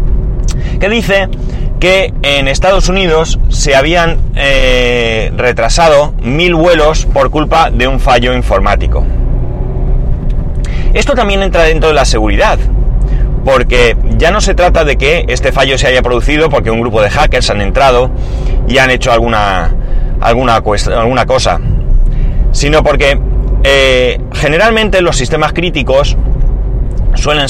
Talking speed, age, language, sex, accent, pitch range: 130 wpm, 30-49, Spanish, male, Spanish, 115-150 Hz